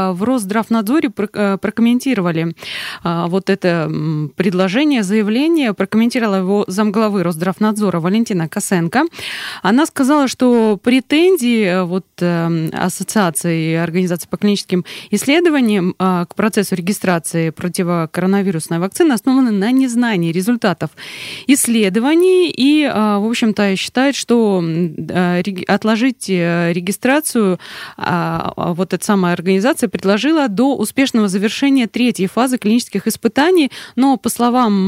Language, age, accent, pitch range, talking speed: Russian, 20-39, native, 190-240 Hz, 95 wpm